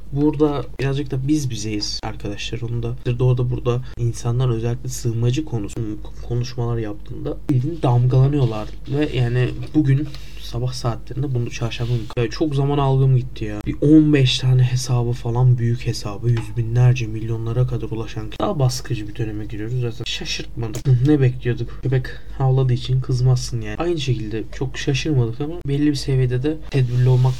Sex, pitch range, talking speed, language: male, 120-140 Hz, 145 wpm, Turkish